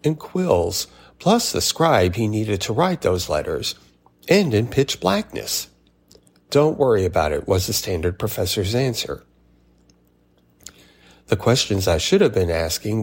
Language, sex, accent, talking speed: English, male, American, 145 wpm